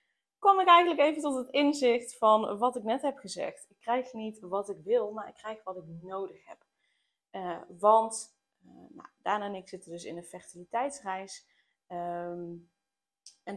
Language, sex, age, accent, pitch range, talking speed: Dutch, female, 20-39, Dutch, 180-215 Hz, 175 wpm